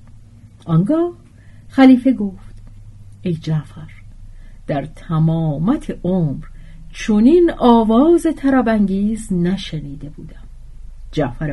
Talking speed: 75 wpm